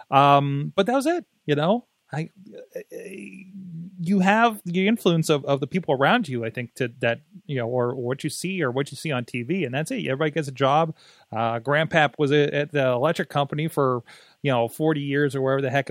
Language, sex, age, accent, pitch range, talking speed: English, male, 30-49, American, 125-175 Hz, 225 wpm